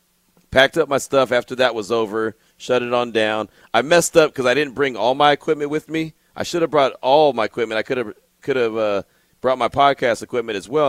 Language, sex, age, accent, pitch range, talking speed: English, male, 40-59, American, 125-175 Hz, 225 wpm